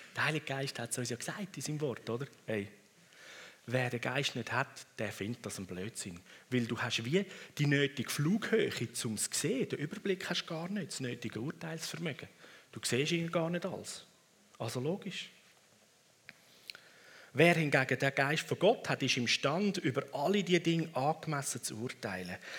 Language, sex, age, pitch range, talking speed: German, male, 40-59, 115-160 Hz, 180 wpm